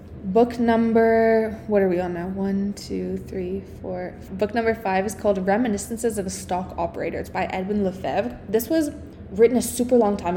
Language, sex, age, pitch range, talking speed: English, female, 20-39, 180-225 Hz, 185 wpm